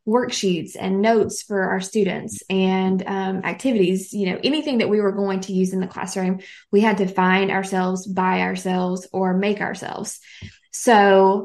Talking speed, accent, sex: 170 wpm, American, female